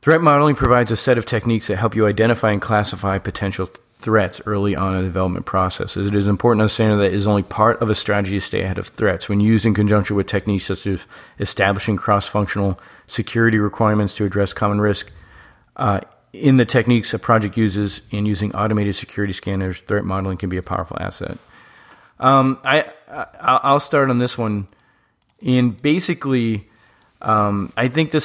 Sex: male